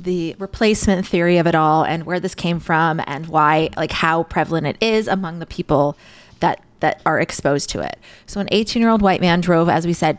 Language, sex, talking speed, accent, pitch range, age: English, female, 225 wpm, American, 165-210 Hz, 20-39